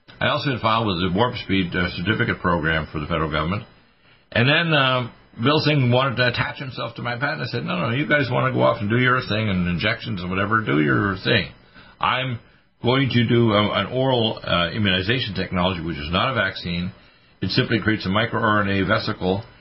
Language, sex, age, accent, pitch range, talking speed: English, male, 50-69, American, 90-115 Hz, 210 wpm